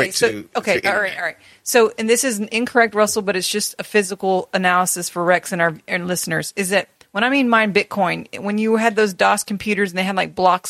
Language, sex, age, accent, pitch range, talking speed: English, female, 30-49, American, 180-225 Hz, 230 wpm